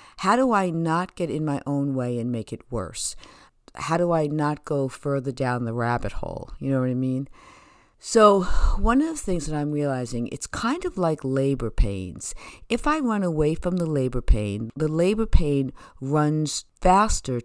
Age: 50-69